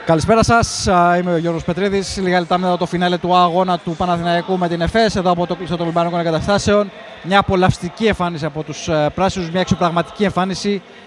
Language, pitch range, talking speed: Greek, 165-195 Hz, 180 wpm